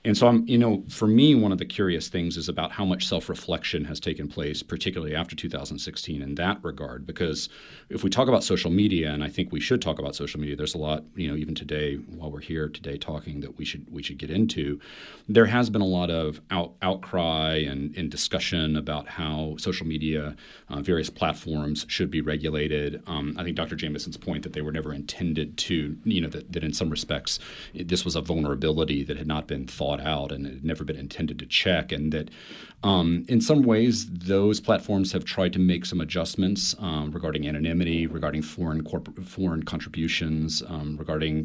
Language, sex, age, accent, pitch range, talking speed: English, male, 40-59, American, 75-90 Hz, 205 wpm